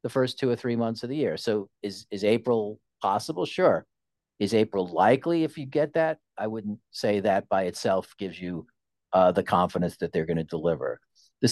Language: English